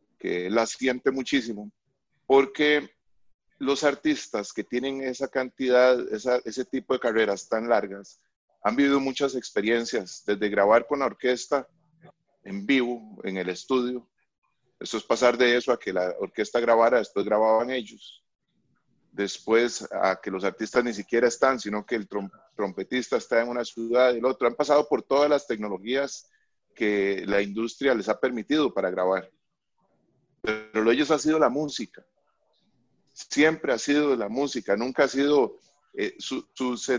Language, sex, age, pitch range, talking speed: Spanish, male, 30-49, 110-140 Hz, 155 wpm